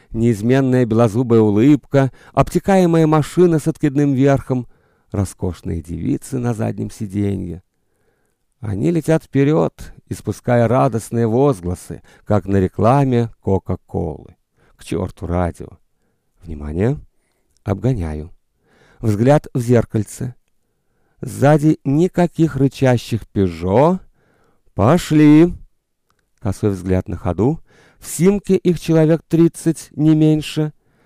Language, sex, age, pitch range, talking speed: Russian, male, 50-69, 105-150 Hz, 90 wpm